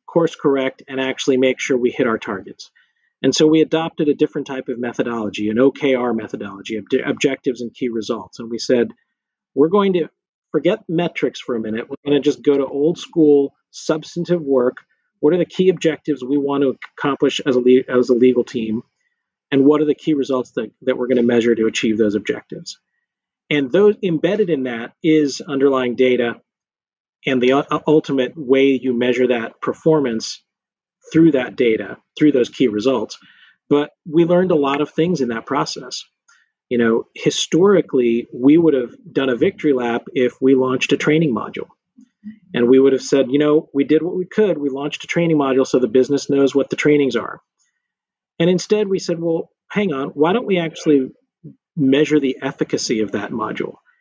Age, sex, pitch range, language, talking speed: 40-59, male, 130-160 Hz, English, 190 wpm